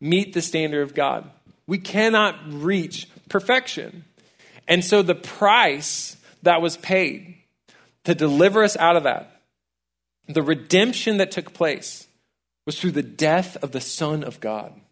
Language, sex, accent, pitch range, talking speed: English, male, American, 130-175 Hz, 145 wpm